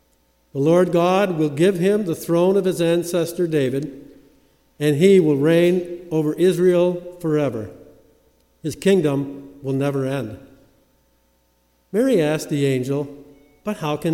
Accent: American